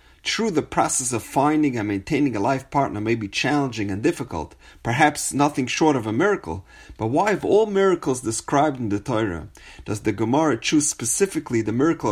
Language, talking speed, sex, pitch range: English, 185 wpm, male, 105-145 Hz